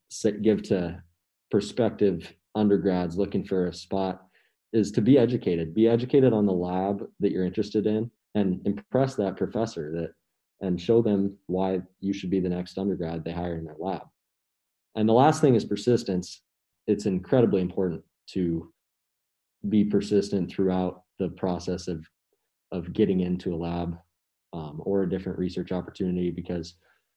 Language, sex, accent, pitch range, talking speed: English, male, American, 90-105 Hz, 150 wpm